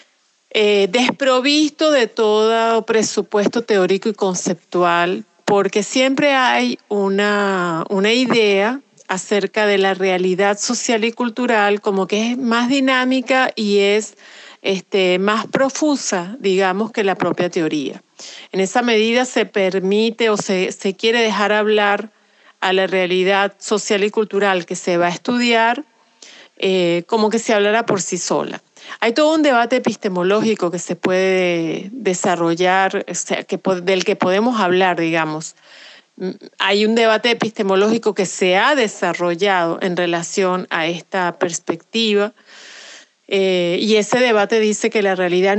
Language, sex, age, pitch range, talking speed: Spanish, female, 40-59, 185-225 Hz, 135 wpm